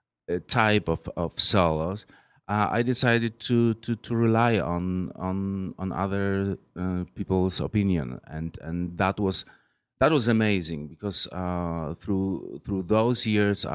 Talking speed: 135 wpm